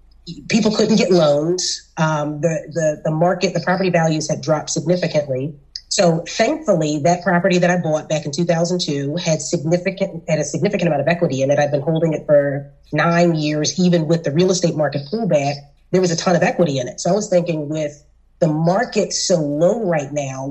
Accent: American